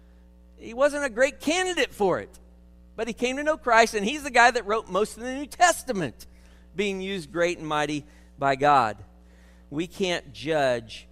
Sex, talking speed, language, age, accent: male, 185 wpm, English, 50-69, American